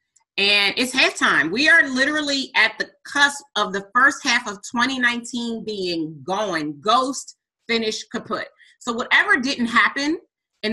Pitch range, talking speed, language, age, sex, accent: 200-265 Hz, 145 wpm, English, 30-49, female, American